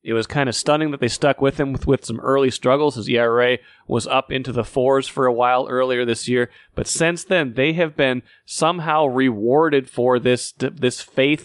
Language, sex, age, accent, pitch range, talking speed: English, male, 30-49, American, 120-145 Hz, 210 wpm